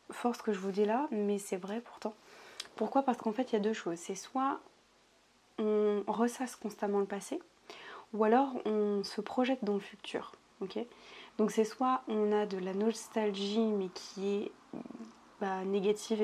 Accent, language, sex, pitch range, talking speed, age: French, French, female, 200-230 Hz, 175 wpm, 20-39